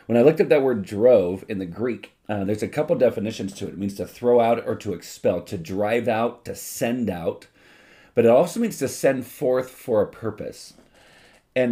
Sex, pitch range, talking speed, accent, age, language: male, 105-135 Hz, 215 wpm, American, 40-59, English